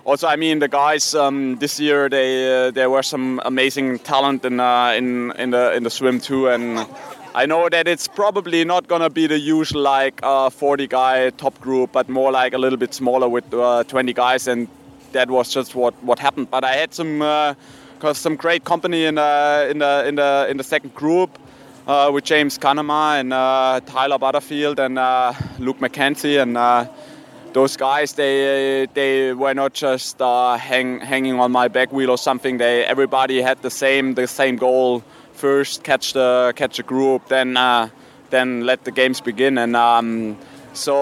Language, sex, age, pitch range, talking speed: English, male, 20-39, 125-145 Hz, 195 wpm